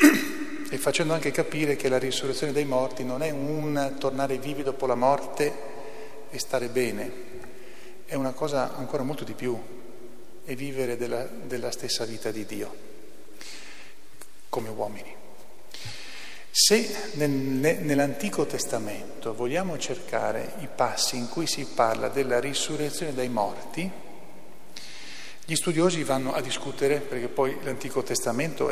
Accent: native